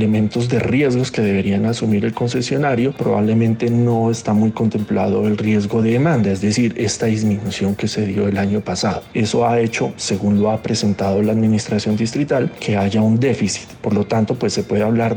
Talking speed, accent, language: 190 wpm, Colombian, Spanish